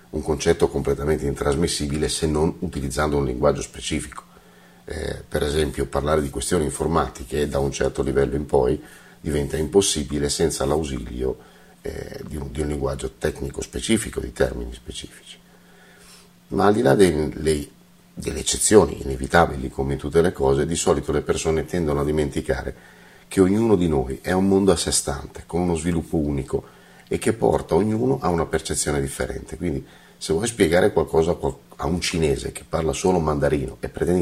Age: 50-69